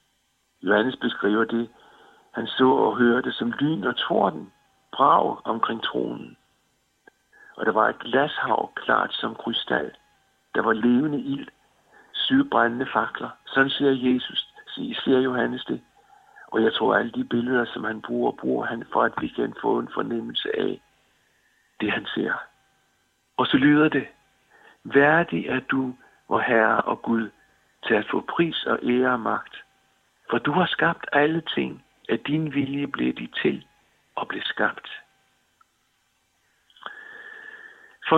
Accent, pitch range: native, 125-190 Hz